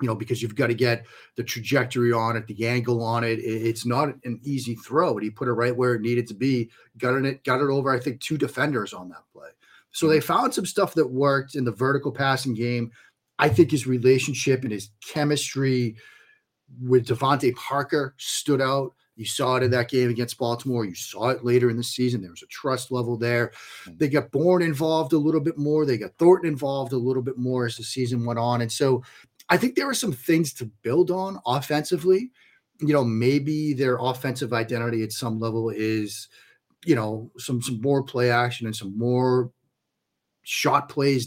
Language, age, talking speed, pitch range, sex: English, 40-59, 210 wpm, 115-140 Hz, male